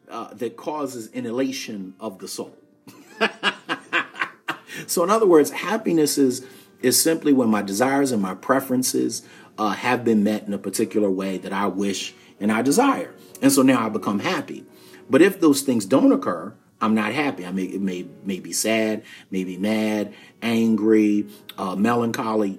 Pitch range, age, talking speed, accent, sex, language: 100-140 Hz, 40-59, 165 wpm, American, male, English